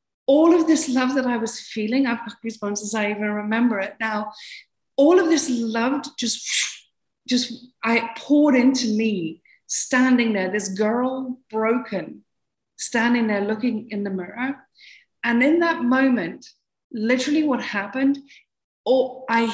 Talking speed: 140 wpm